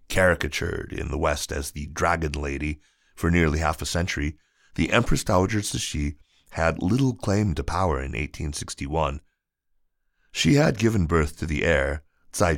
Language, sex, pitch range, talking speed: English, male, 75-90 Hz, 155 wpm